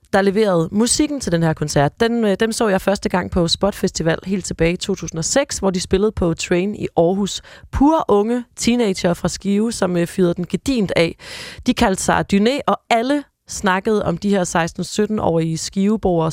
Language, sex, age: Danish, female, 30-49